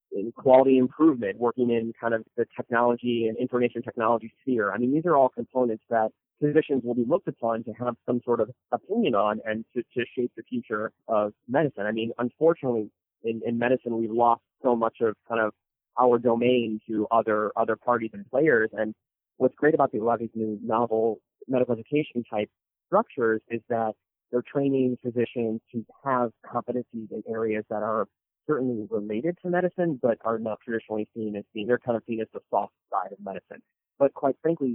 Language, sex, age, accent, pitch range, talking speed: English, male, 30-49, American, 110-125 Hz, 195 wpm